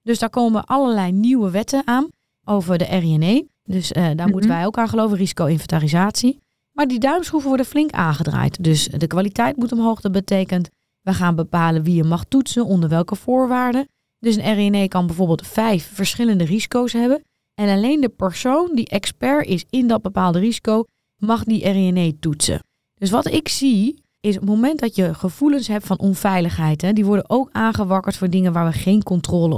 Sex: female